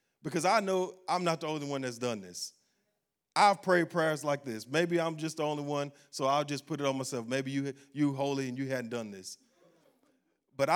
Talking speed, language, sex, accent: 220 wpm, English, male, American